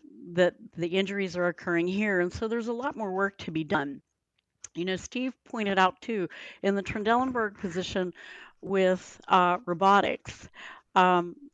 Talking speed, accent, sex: 155 wpm, American, female